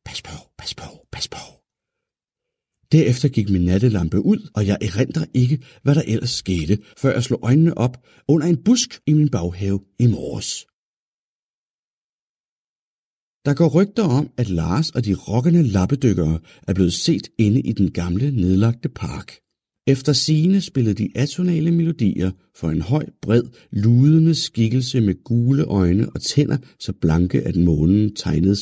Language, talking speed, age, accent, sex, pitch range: Danish, 155 wpm, 60-79, native, male, 100-160 Hz